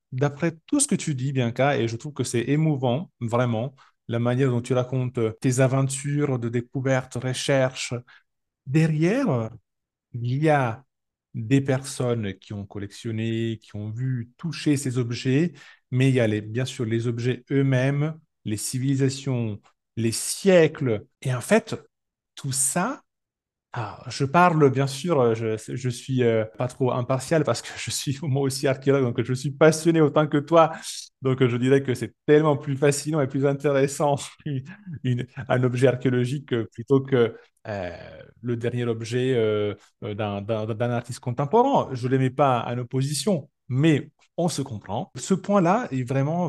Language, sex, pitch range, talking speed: French, male, 120-150 Hz, 160 wpm